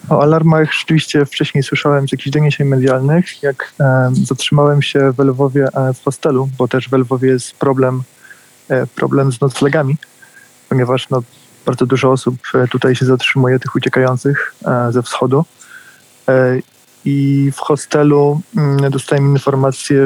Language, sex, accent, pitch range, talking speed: Polish, male, native, 130-140 Hz, 125 wpm